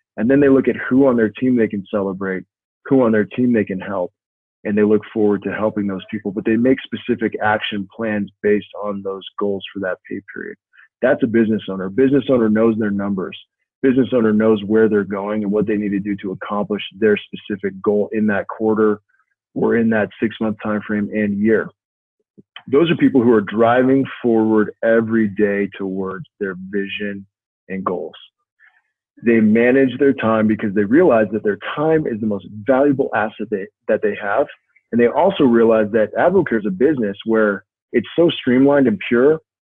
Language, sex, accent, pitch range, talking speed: English, male, American, 100-115 Hz, 195 wpm